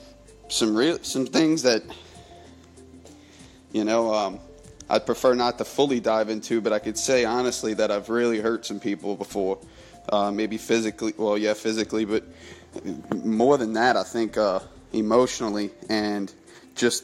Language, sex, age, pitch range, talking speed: English, male, 30-49, 105-125 Hz, 150 wpm